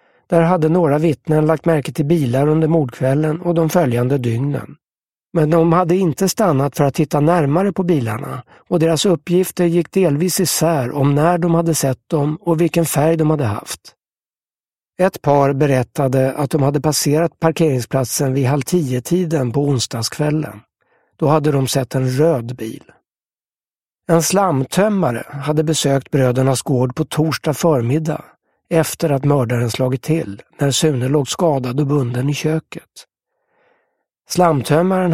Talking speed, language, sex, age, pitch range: 150 wpm, English, male, 60-79, 135-165 Hz